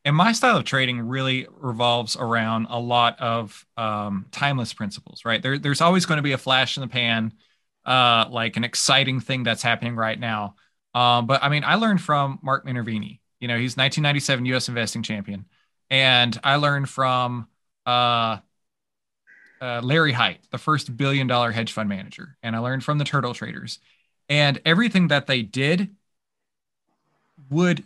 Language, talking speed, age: English, 170 wpm, 20-39